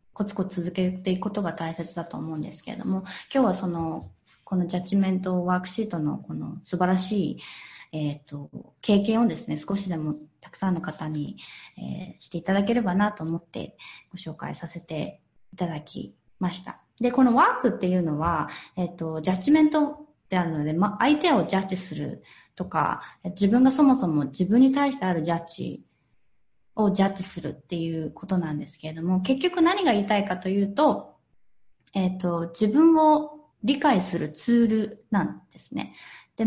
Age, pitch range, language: 20-39, 170-235 Hz, Japanese